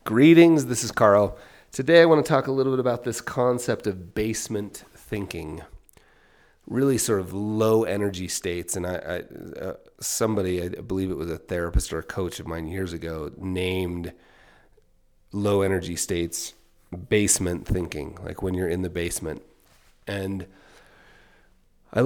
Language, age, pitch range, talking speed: English, 30-49, 90-115 Hz, 145 wpm